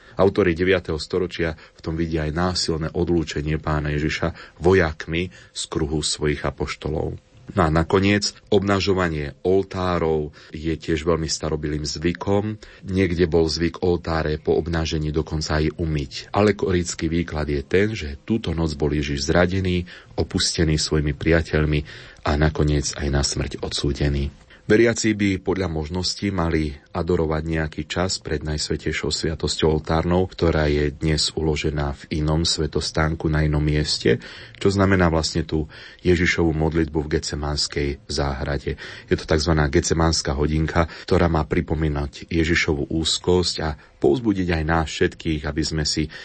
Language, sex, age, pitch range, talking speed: Slovak, male, 30-49, 75-90 Hz, 135 wpm